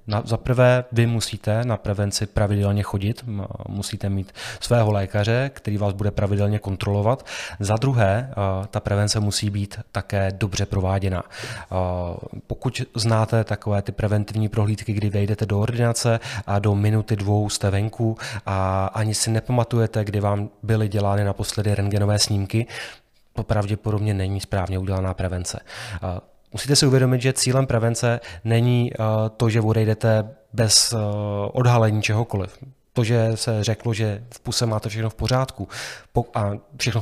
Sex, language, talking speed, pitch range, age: male, Czech, 135 wpm, 100-115 Hz, 20-39